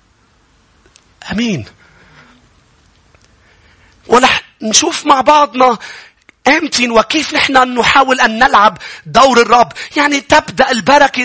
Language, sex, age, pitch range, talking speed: English, male, 40-59, 255-320 Hz, 85 wpm